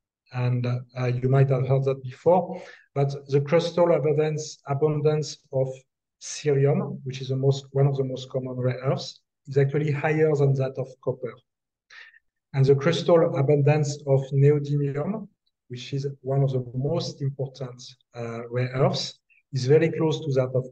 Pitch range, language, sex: 130-155 Hz, English, male